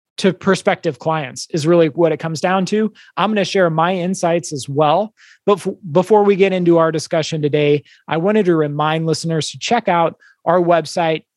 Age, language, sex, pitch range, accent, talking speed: 30-49, English, male, 155-190 Hz, American, 195 wpm